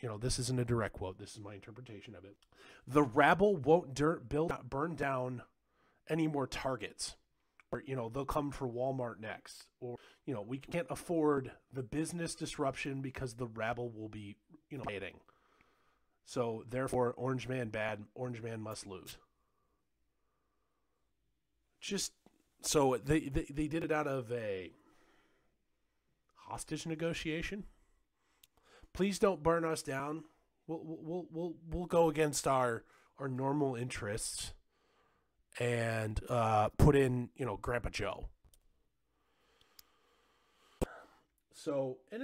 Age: 30-49